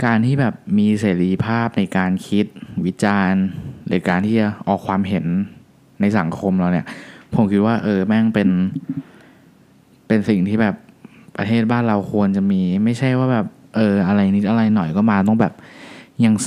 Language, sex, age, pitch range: Thai, male, 20-39, 95-110 Hz